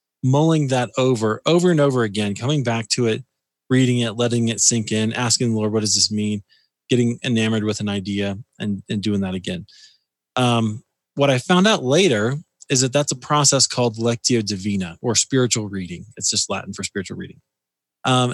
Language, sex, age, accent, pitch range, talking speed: English, male, 20-39, American, 100-125 Hz, 190 wpm